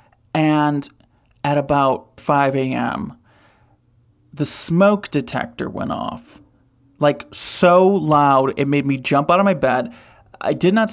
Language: English